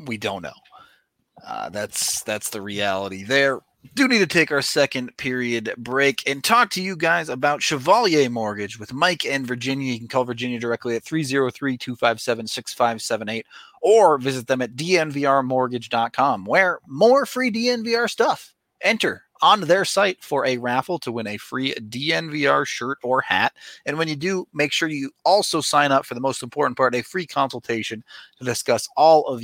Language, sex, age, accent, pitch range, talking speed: English, male, 30-49, American, 120-155 Hz, 170 wpm